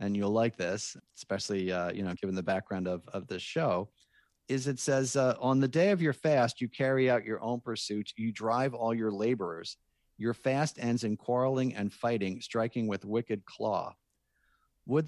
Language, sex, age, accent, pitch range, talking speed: English, male, 40-59, American, 100-130 Hz, 190 wpm